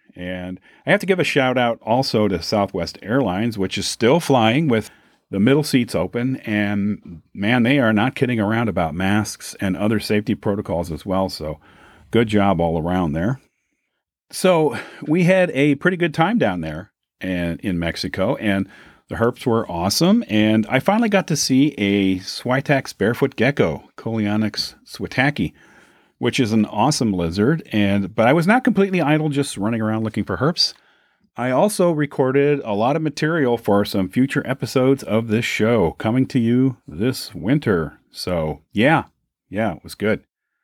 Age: 40-59